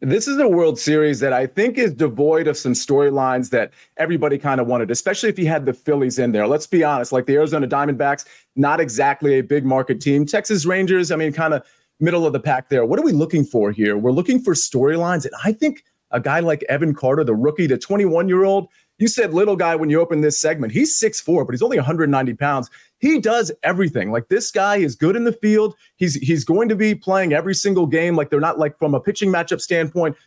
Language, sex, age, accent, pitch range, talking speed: English, male, 30-49, American, 145-195 Hz, 235 wpm